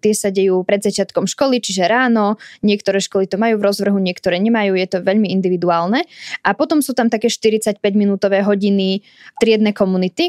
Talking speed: 165 wpm